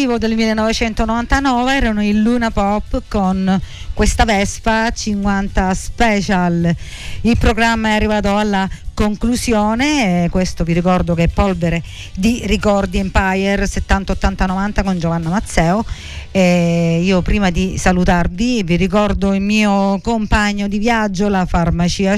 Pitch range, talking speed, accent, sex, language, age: 180-220 Hz, 120 wpm, native, female, Italian, 50-69